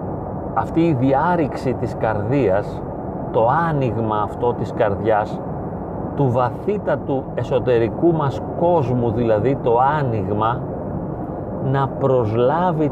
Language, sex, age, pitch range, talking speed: Greek, male, 40-59, 125-165 Hz, 95 wpm